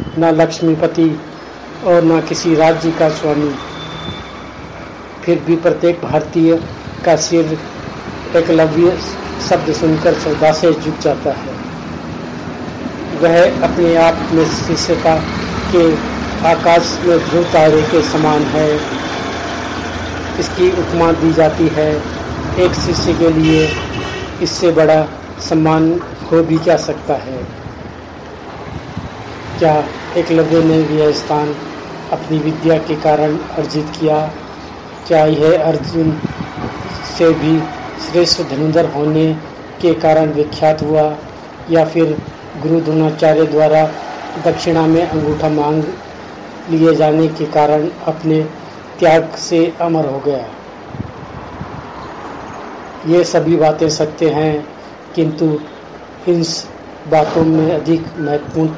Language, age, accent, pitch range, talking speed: Hindi, 50-69, native, 155-165 Hz, 105 wpm